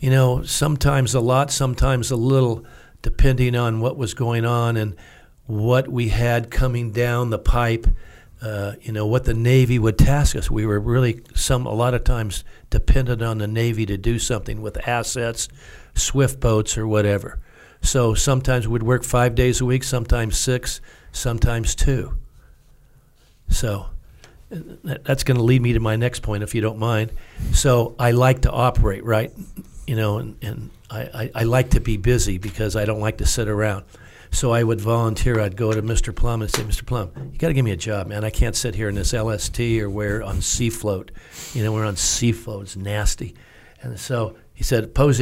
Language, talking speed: English, 200 wpm